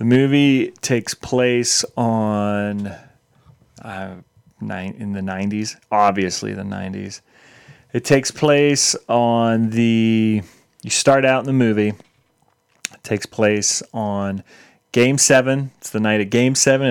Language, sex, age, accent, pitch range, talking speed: English, male, 30-49, American, 105-125 Hz, 125 wpm